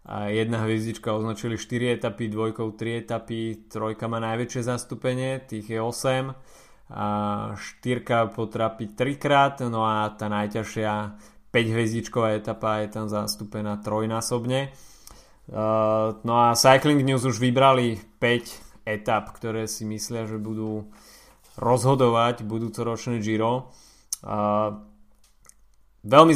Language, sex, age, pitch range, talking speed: Slovak, male, 20-39, 110-130 Hz, 110 wpm